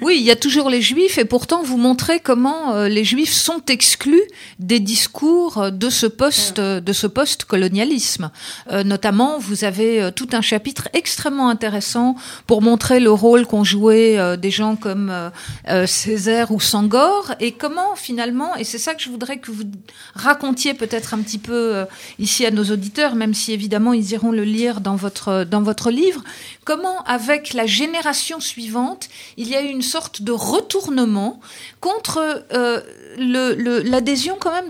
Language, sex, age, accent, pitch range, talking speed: French, female, 50-69, French, 215-285 Hz, 165 wpm